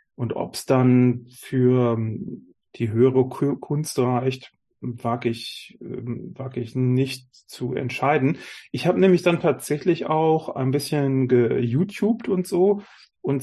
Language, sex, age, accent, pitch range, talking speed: German, male, 30-49, German, 120-140 Hz, 125 wpm